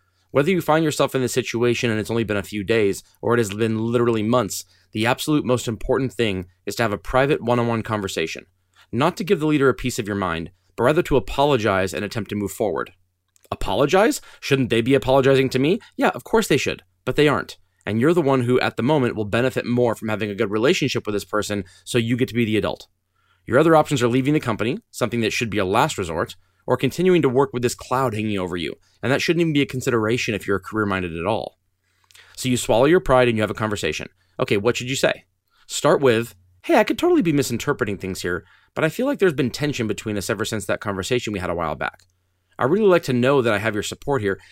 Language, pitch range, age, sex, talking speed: English, 100-130 Hz, 20-39, male, 245 wpm